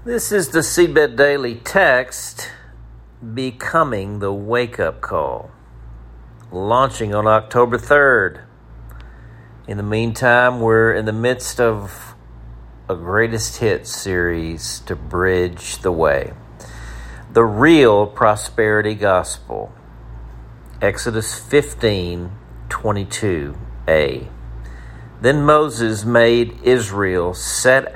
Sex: male